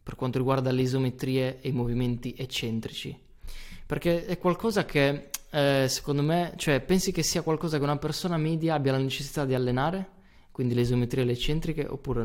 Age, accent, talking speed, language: 20-39, native, 180 wpm, Italian